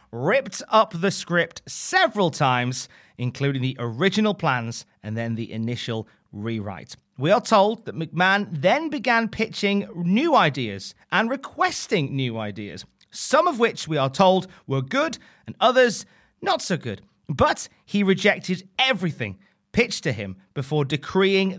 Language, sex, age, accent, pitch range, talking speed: English, male, 30-49, British, 125-195 Hz, 140 wpm